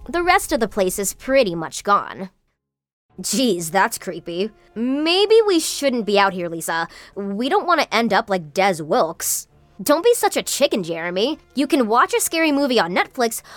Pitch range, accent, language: 190-285 Hz, American, English